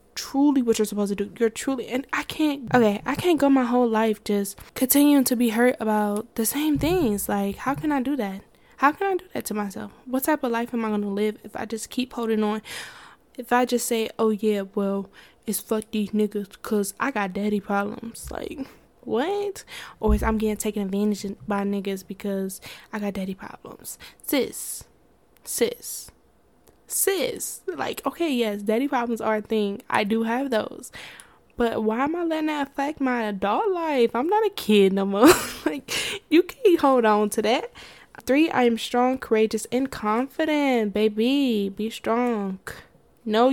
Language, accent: English, American